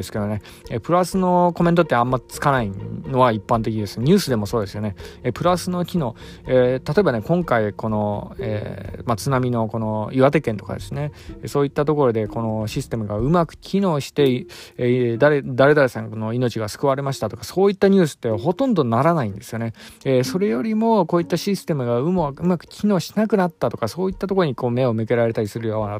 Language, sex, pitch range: Japanese, male, 110-155 Hz